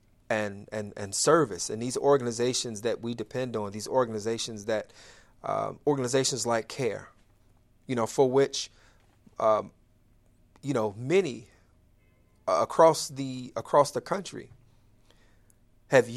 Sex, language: male, English